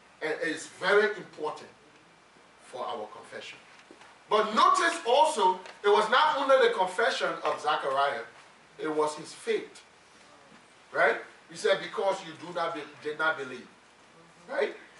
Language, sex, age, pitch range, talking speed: English, male, 30-49, 170-265 Hz, 135 wpm